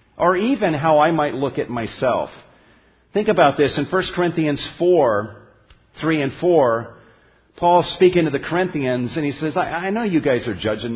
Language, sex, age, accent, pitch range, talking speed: English, male, 50-69, American, 120-170 Hz, 180 wpm